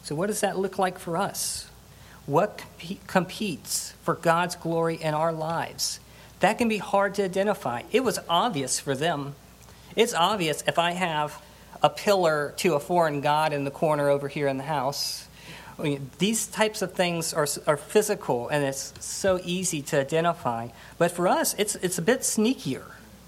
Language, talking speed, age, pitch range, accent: English, 180 wpm, 50-69, 145-190 Hz, American